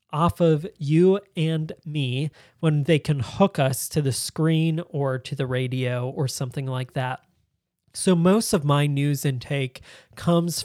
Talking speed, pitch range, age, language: 160 wpm, 135-160 Hz, 20-39, English